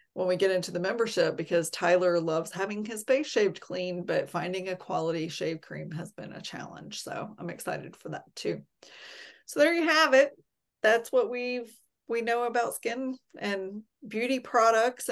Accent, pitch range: American, 180-225 Hz